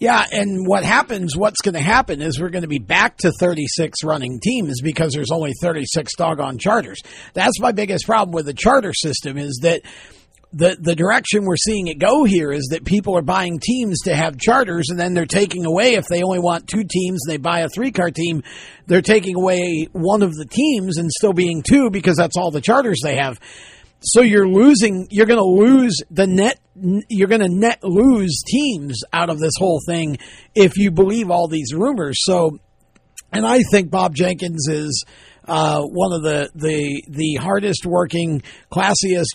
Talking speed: 195 wpm